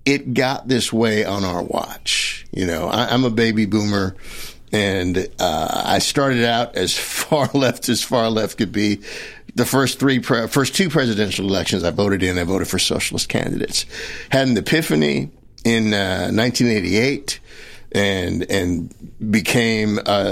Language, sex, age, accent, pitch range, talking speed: English, male, 50-69, American, 100-130 Hz, 155 wpm